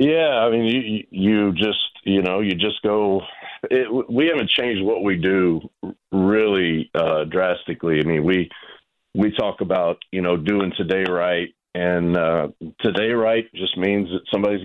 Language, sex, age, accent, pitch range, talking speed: English, male, 50-69, American, 90-110 Hz, 165 wpm